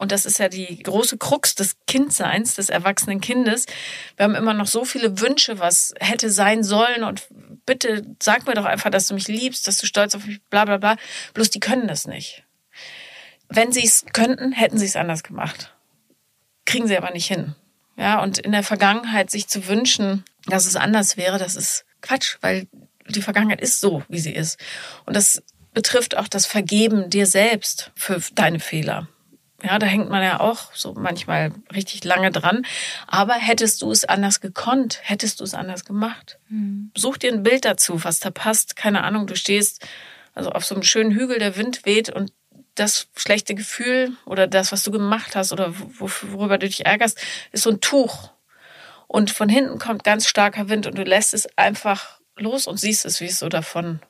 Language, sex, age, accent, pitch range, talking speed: German, female, 30-49, German, 195-225 Hz, 195 wpm